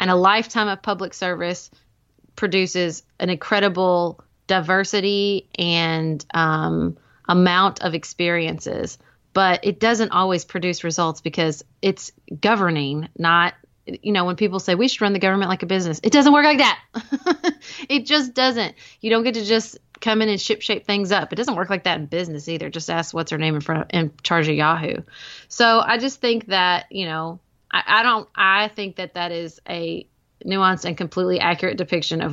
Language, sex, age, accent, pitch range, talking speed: English, female, 30-49, American, 165-200 Hz, 185 wpm